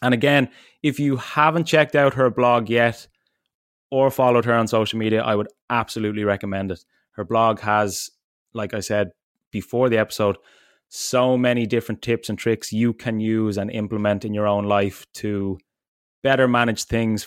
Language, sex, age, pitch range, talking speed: English, male, 20-39, 105-125 Hz, 170 wpm